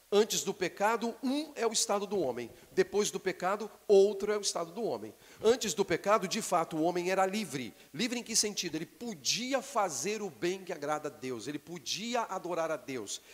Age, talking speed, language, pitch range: 50-69, 200 wpm, Portuguese, 155-205 Hz